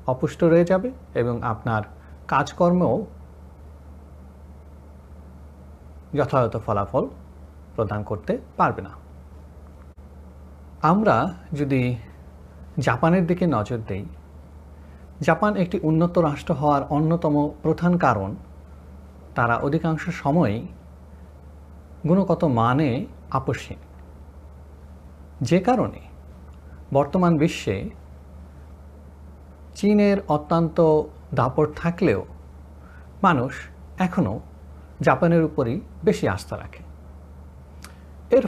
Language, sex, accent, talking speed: Bengali, male, native, 75 wpm